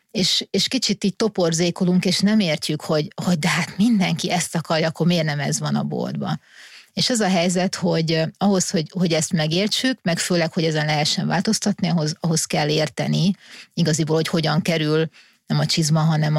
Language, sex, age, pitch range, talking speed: Hungarian, female, 30-49, 155-185 Hz, 185 wpm